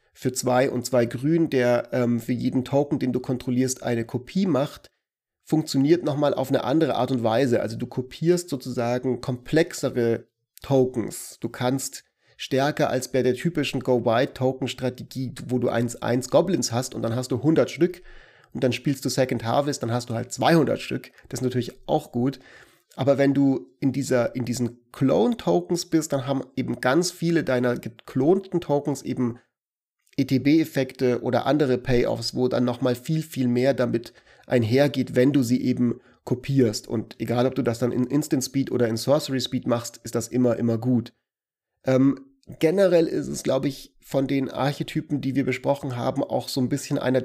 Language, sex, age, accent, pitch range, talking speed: German, male, 30-49, German, 125-145 Hz, 175 wpm